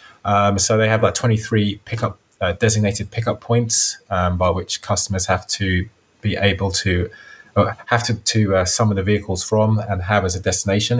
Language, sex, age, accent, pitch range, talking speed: English, male, 20-39, British, 95-110 Hz, 180 wpm